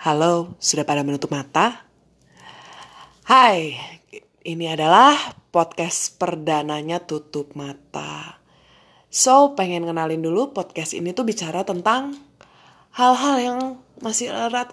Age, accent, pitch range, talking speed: 20-39, native, 165-230 Hz, 100 wpm